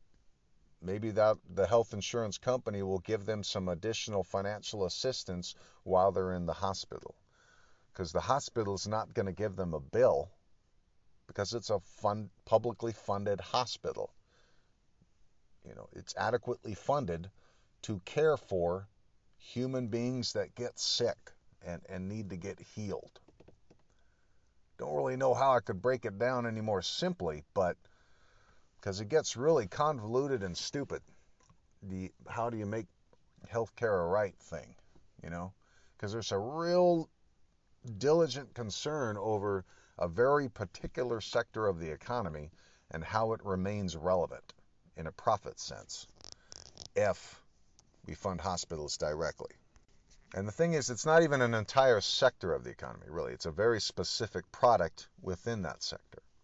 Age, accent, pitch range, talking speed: 50-69, American, 95-120 Hz, 145 wpm